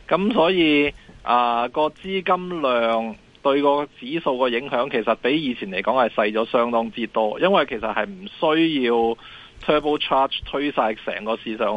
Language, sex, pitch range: Chinese, male, 125-180 Hz